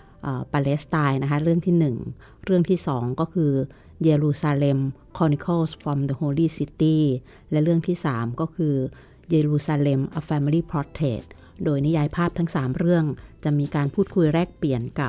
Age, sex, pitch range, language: 30-49, female, 140-165 Hz, Thai